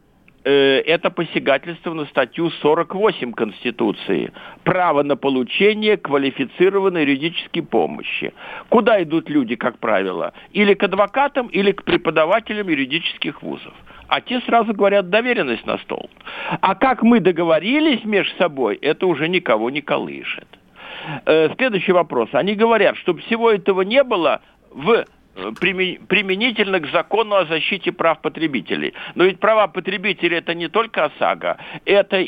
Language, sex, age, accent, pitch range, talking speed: Russian, male, 60-79, native, 155-205 Hz, 130 wpm